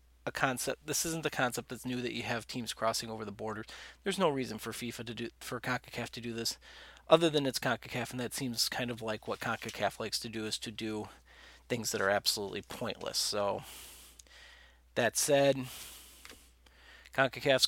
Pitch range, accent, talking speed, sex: 110-130 Hz, American, 185 wpm, male